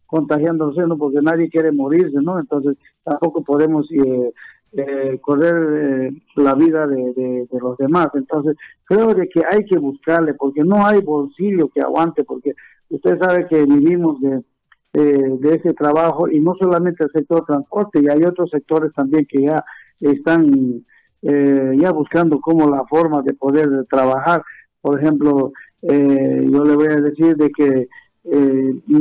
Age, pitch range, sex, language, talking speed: 50-69, 140-165 Hz, male, Spanish, 160 wpm